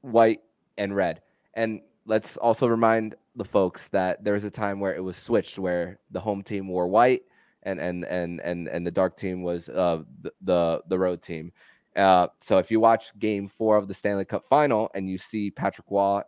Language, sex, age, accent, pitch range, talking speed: English, male, 20-39, American, 90-110 Hz, 205 wpm